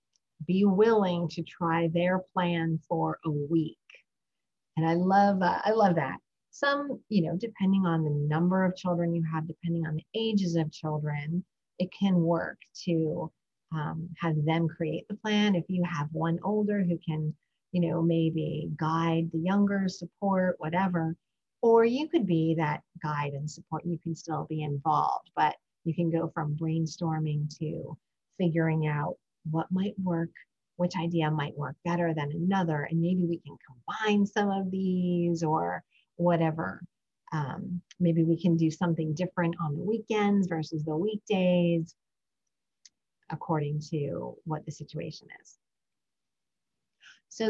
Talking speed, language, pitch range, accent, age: 150 wpm, English, 160-190 Hz, American, 40-59